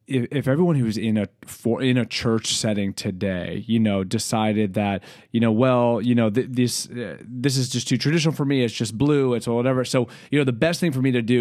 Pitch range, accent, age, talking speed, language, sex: 115-135 Hz, American, 30-49, 240 wpm, English, male